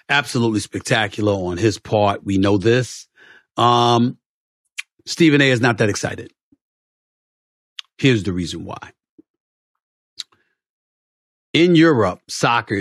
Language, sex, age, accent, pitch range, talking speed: English, male, 40-59, American, 95-120 Hz, 105 wpm